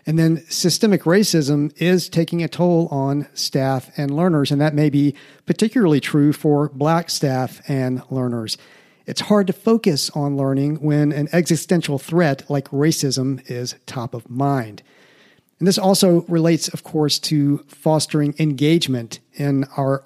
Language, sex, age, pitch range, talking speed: English, male, 50-69, 135-165 Hz, 150 wpm